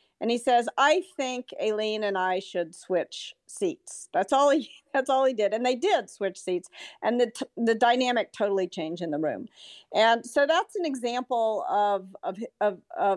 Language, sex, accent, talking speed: English, female, American, 185 wpm